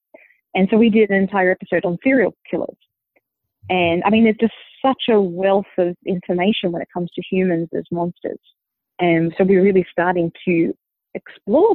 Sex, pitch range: female, 170-200 Hz